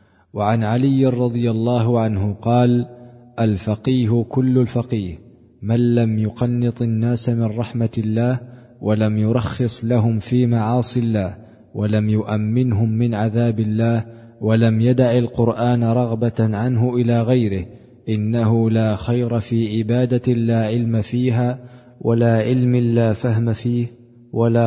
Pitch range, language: 110-120 Hz, Arabic